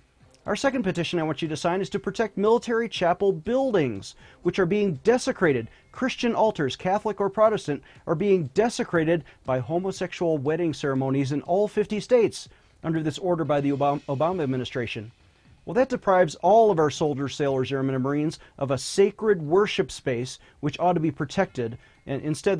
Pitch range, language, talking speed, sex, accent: 140-200 Hz, English, 175 wpm, male, American